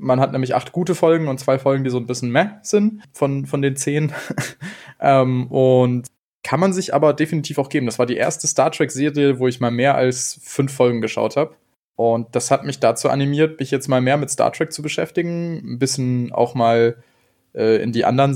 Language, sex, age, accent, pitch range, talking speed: German, male, 20-39, German, 125-150 Hz, 215 wpm